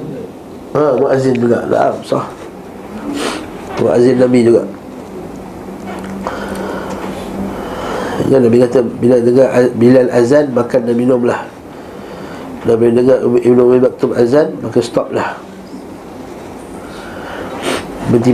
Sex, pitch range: male, 120-135 Hz